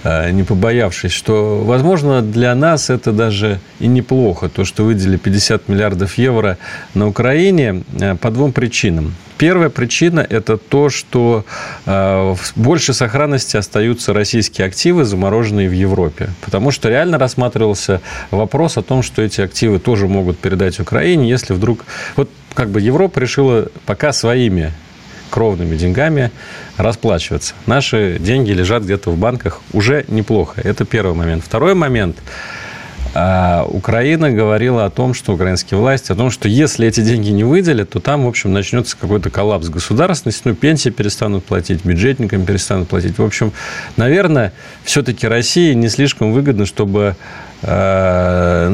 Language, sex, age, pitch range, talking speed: Russian, male, 40-59, 95-125 Hz, 140 wpm